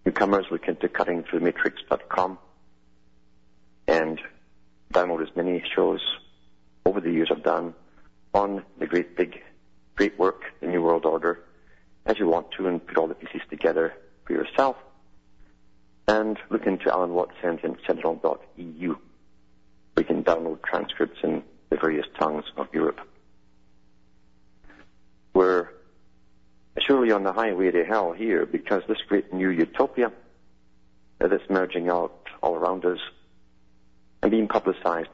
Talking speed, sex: 130 wpm, male